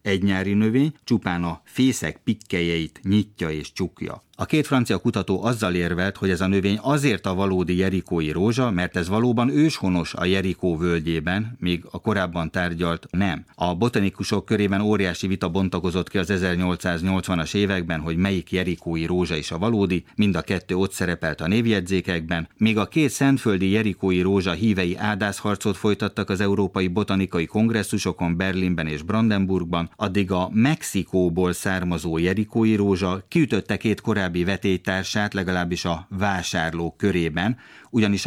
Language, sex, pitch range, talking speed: Hungarian, male, 90-105 Hz, 145 wpm